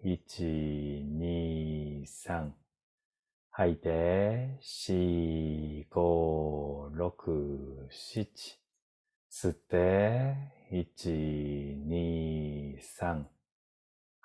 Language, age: Japanese, 40-59